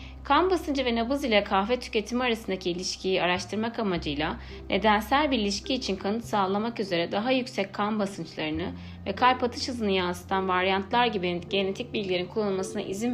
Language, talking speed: Turkish, 150 wpm